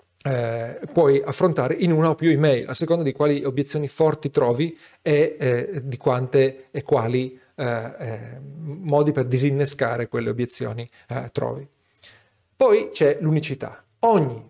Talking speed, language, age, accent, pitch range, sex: 140 wpm, Italian, 40-59, native, 130-165 Hz, male